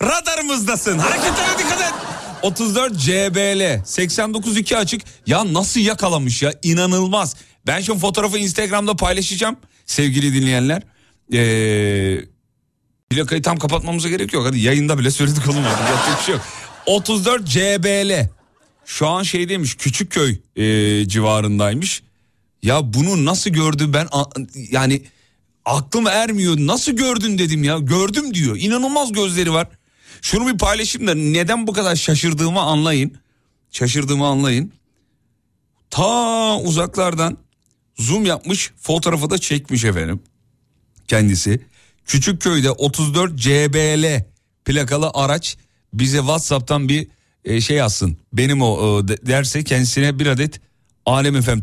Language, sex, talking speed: Turkish, male, 110 wpm